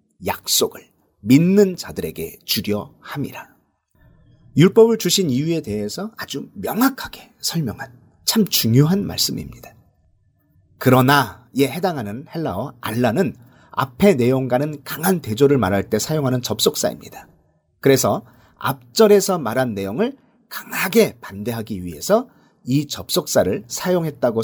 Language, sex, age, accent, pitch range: Korean, male, 40-59, native, 120-195 Hz